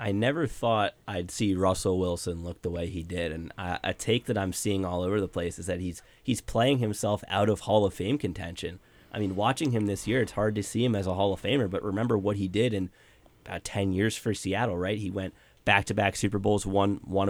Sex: male